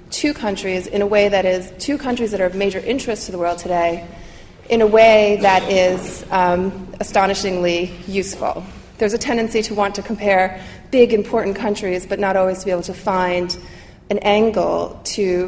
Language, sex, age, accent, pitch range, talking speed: English, female, 30-49, American, 180-215 Hz, 180 wpm